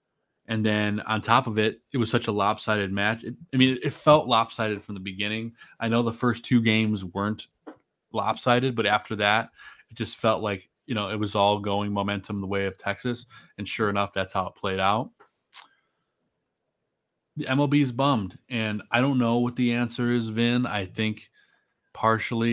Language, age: English, 20-39